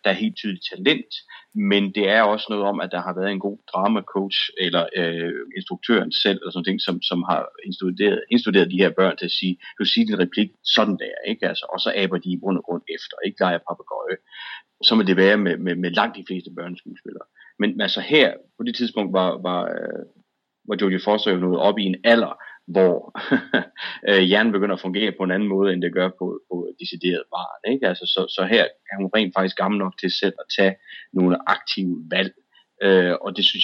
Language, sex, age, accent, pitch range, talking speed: English, male, 30-49, Danish, 90-100 Hz, 220 wpm